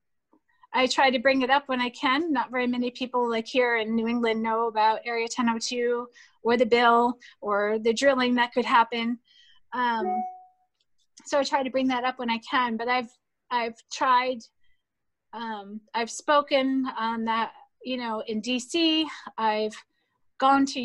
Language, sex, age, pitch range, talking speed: English, female, 30-49, 230-265 Hz, 165 wpm